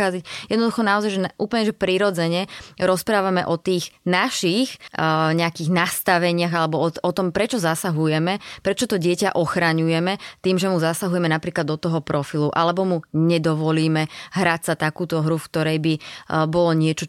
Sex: female